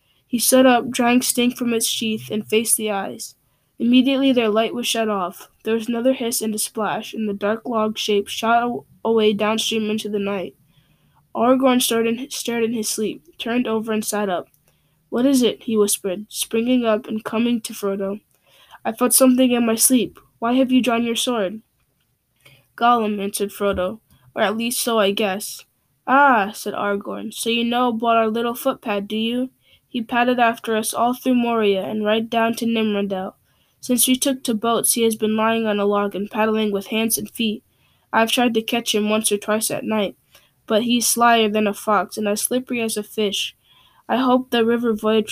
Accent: American